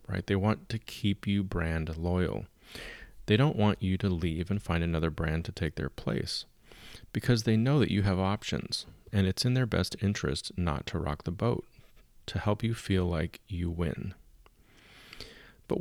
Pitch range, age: 85-105 Hz, 30-49